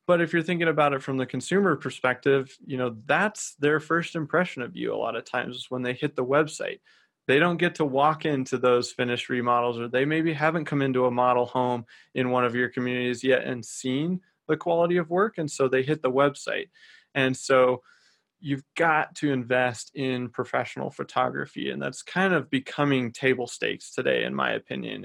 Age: 20-39